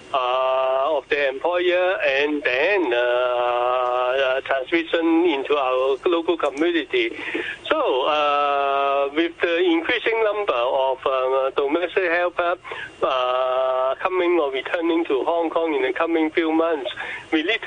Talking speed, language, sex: 125 wpm, English, male